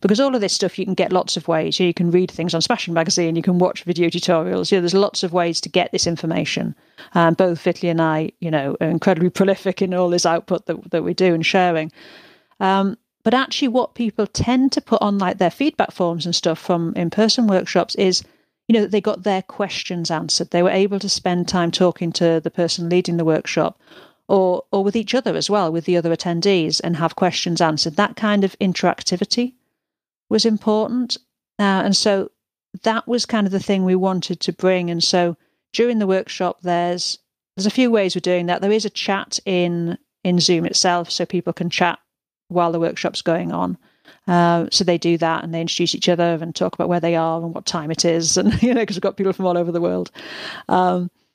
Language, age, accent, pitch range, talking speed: English, 40-59, British, 170-205 Hz, 225 wpm